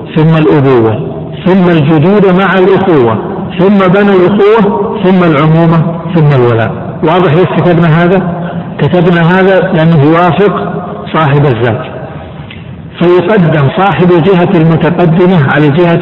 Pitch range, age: 150-185 Hz, 60-79